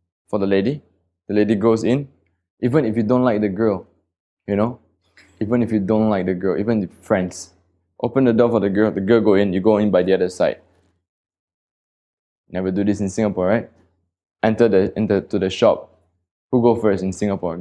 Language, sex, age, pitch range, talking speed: English, male, 20-39, 90-115 Hz, 205 wpm